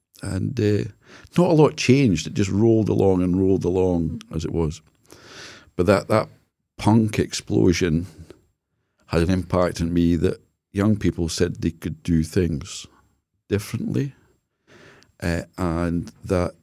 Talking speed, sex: 135 wpm, male